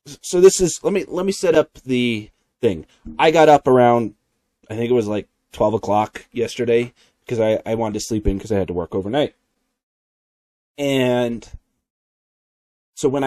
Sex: male